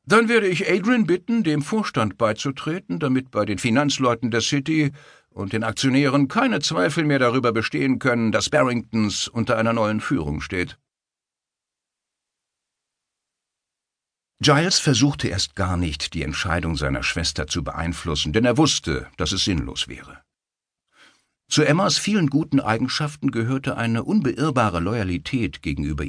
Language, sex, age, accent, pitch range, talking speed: German, male, 60-79, German, 90-135 Hz, 135 wpm